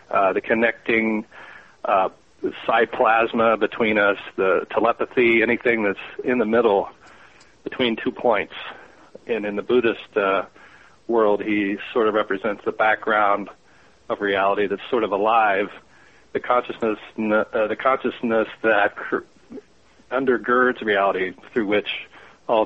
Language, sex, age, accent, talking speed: English, male, 40-59, American, 125 wpm